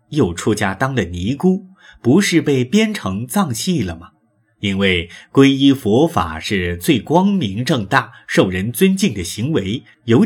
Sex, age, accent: male, 30-49, native